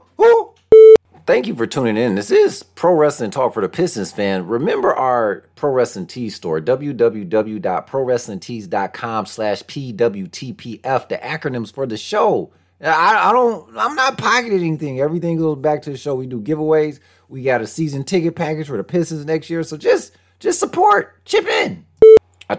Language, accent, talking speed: English, American, 165 wpm